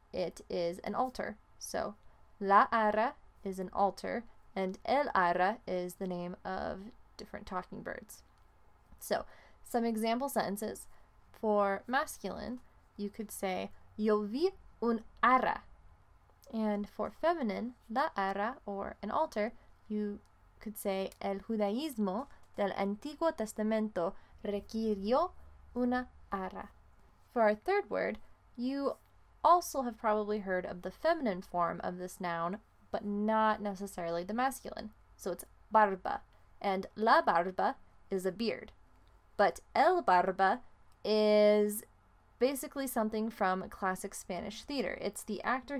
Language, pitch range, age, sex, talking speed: English, 190-230 Hz, 10-29, female, 125 wpm